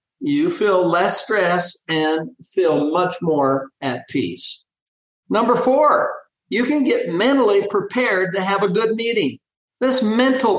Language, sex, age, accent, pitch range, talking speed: English, male, 50-69, American, 175-245 Hz, 135 wpm